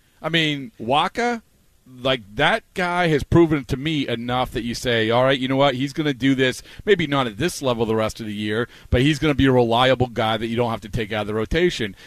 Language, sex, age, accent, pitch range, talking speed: English, male, 40-59, American, 120-155 Hz, 260 wpm